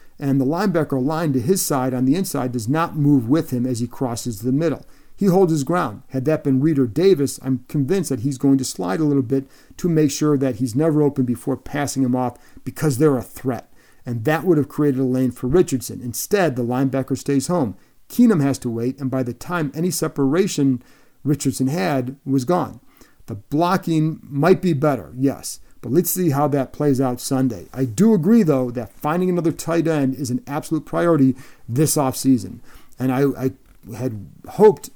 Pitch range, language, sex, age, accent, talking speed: 130-155 Hz, English, male, 50-69, American, 200 wpm